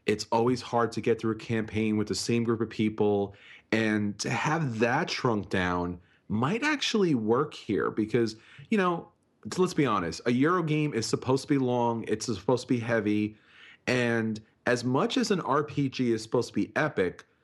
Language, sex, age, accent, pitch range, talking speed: English, male, 30-49, American, 110-145 Hz, 185 wpm